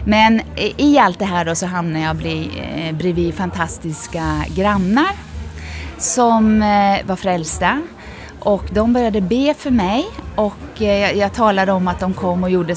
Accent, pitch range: native, 155-205 Hz